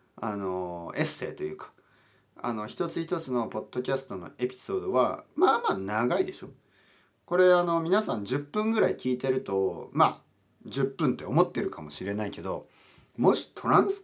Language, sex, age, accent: Japanese, male, 40-59, native